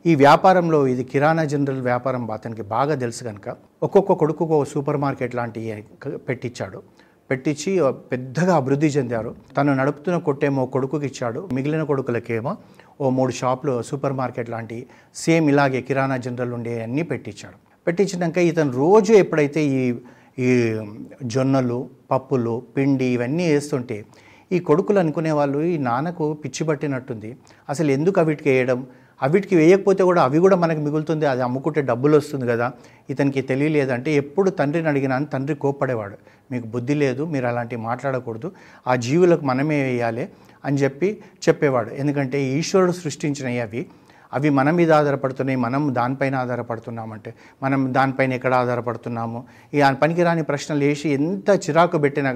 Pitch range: 125-155 Hz